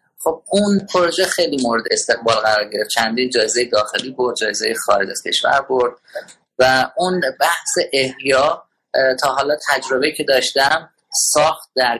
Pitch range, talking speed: 130-180 Hz, 135 wpm